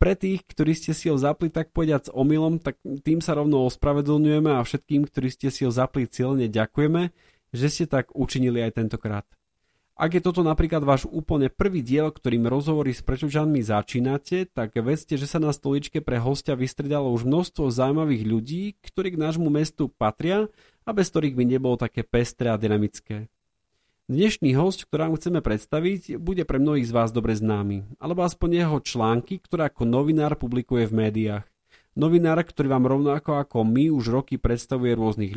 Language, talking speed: Slovak, 175 wpm